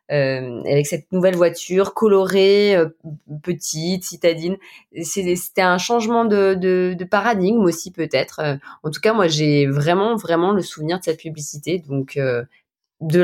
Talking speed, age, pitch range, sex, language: 160 wpm, 20-39, 145-185 Hz, female, French